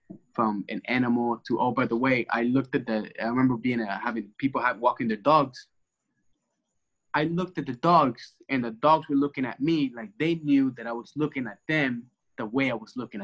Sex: male